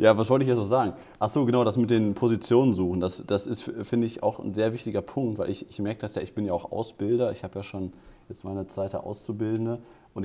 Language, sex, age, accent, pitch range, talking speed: German, male, 30-49, German, 105-125 Hz, 260 wpm